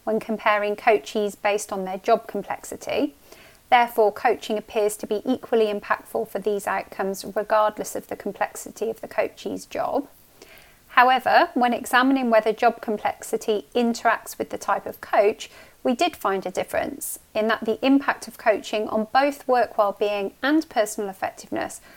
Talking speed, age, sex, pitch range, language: 155 wpm, 30-49, female, 210-255 Hz, English